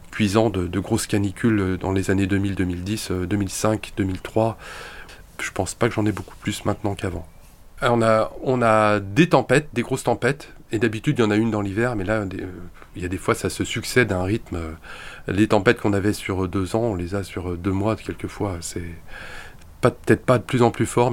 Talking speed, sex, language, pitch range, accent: 220 wpm, male, French, 95-120 Hz, French